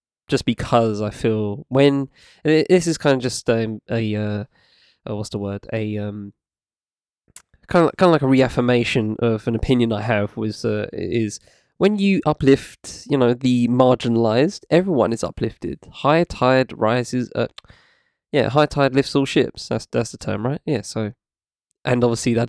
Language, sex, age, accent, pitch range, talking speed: English, male, 20-39, British, 105-135 Hz, 170 wpm